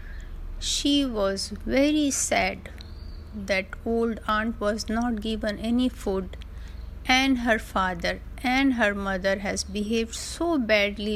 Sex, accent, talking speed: female, native, 120 wpm